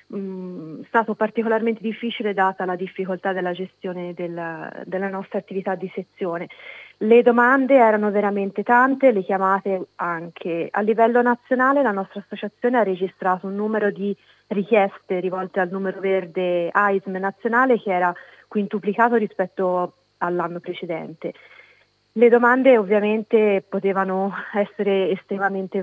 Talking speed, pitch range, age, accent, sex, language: 120 wpm, 185-210 Hz, 30-49, native, female, Italian